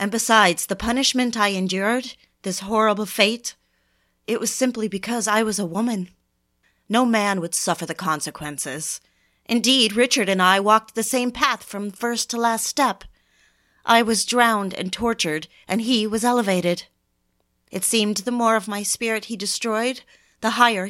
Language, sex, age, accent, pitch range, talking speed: English, female, 30-49, American, 160-230 Hz, 160 wpm